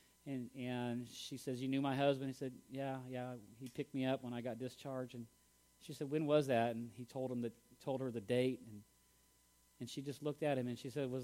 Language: English